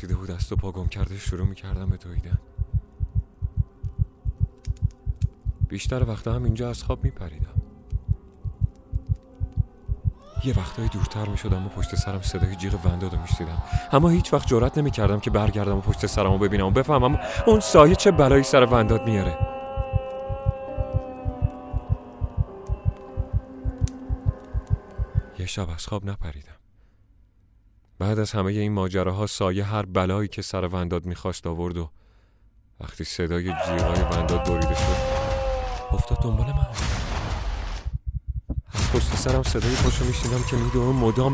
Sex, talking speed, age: male, 135 wpm, 30-49